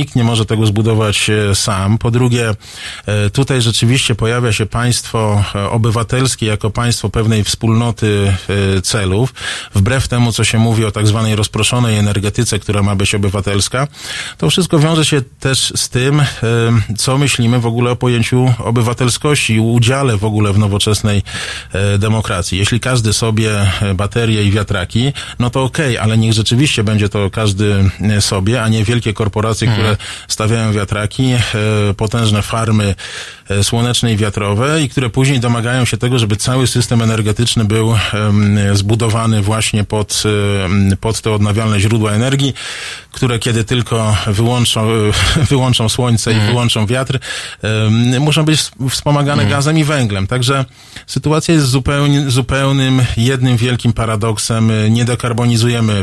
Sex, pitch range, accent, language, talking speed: male, 105-125 Hz, native, Polish, 135 wpm